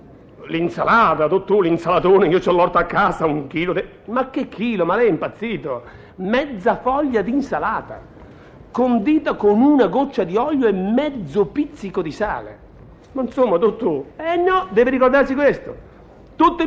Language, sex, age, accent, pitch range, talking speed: Italian, male, 60-79, native, 190-270 Hz, 150 wpm